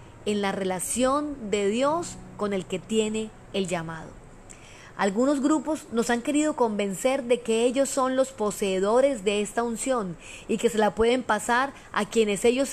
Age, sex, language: 30-49, female, Spanish